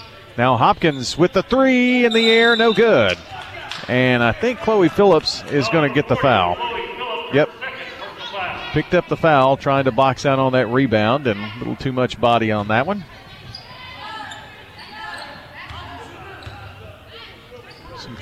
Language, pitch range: English, 115-145 Hz